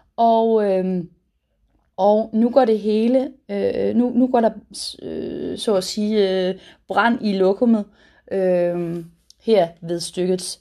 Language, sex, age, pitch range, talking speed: Danish, female, 30-49, 180-230 Hz, 135 wpm